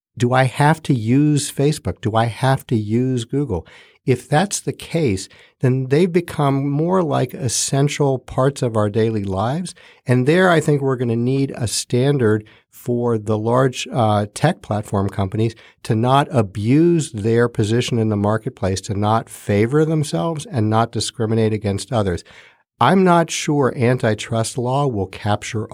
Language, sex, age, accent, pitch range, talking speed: English, male, 50-69, American, 110-140 Hz, 160 wpm